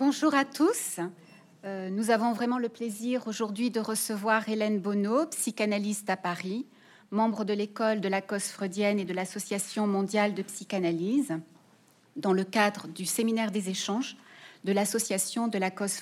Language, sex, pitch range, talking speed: French, female, 195-230 Hz, 155 wpm